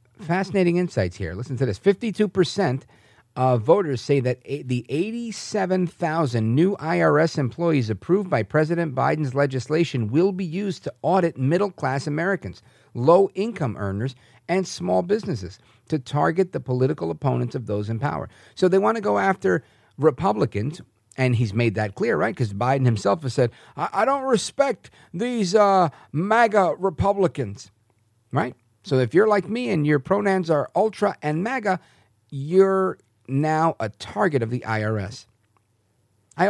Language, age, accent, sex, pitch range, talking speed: English, 50-69, American, male, 115-170 Hz, 150 wpm